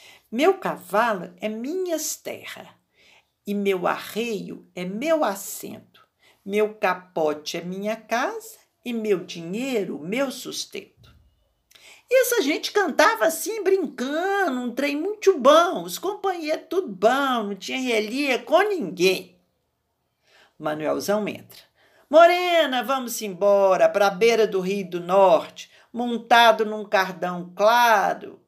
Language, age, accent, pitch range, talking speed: Portuguese, 50-69, Brazilian, 200-320 Hz, 120 wpm